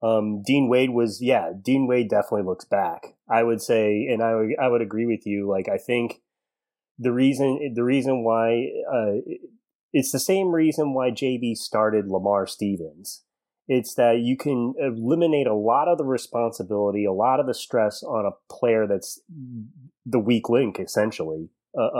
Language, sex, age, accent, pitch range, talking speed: English, male, 30-49, American, 100-125 Hz, 170 wpm